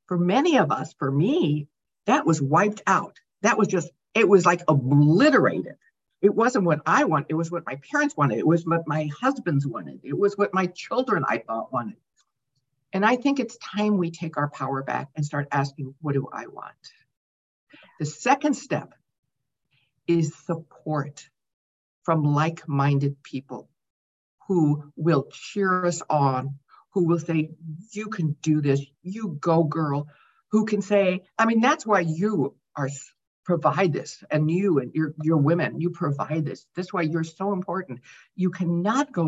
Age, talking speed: 60-79, 170 wpm